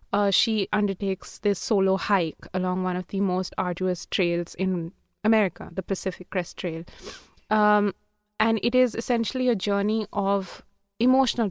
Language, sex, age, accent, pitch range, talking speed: Hindi, female, 20-39, native, 185-220 Hz, 145 wpm